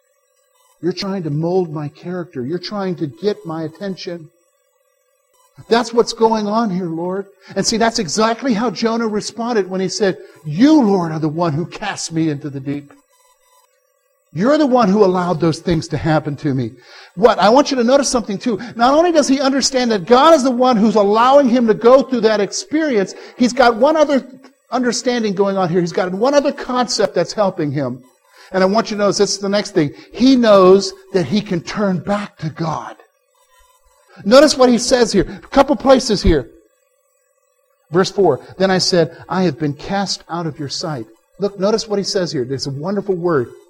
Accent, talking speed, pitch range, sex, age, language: American, 200 wpm, 160-255 Hz, male, 60-79, English